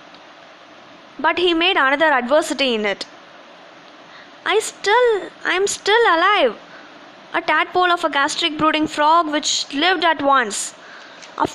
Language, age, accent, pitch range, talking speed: Tamil, 20-39, native, 265-330 Hz, 130 wpm